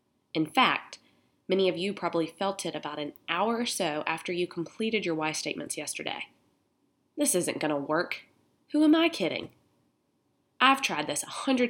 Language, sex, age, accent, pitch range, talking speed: English, female, 20-39, American, 160-205 Hz, 175 wpm